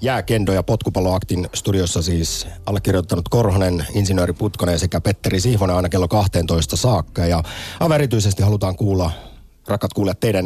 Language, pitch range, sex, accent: Finnish, 90-115 Hz, male, native